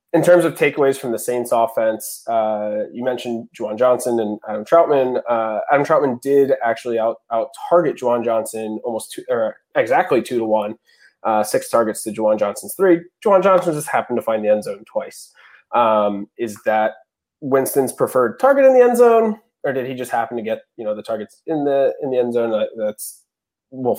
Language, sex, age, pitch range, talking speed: English, male, 20-39, 110-160 Hz, 200 wpm